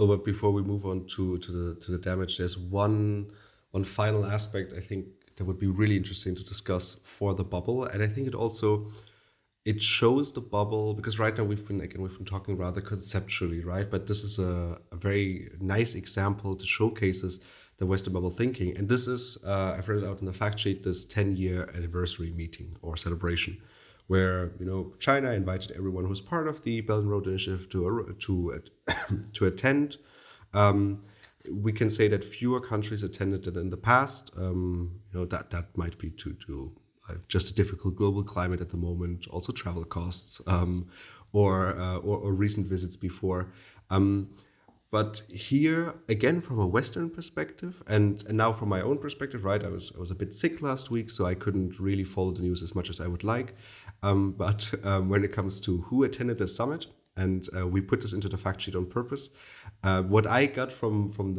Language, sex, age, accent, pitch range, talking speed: English, male, 30-49, German, 95-110 Hz, 200 wpm